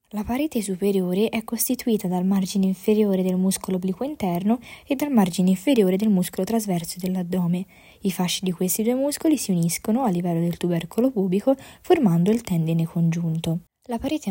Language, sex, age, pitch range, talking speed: Italian, female, 20-39, 180-225 Hz, 165 wpm